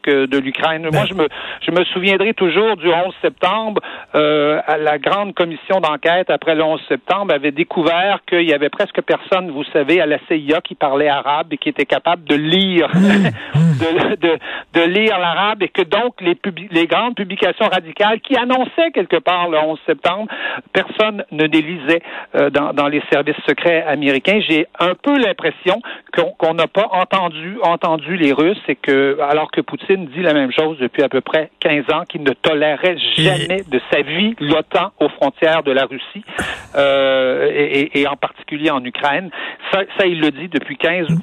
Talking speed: 180 wpm